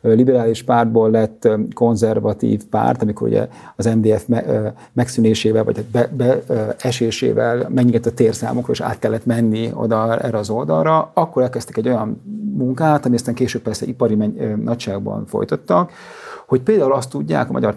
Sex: male